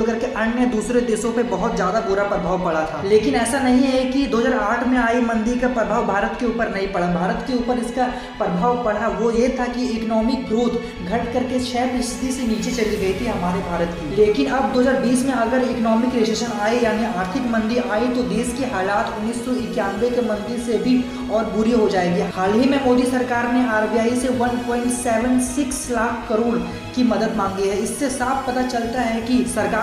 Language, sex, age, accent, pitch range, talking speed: Hindi, female, 20-39, native, 220-250 Hz, 120 wpm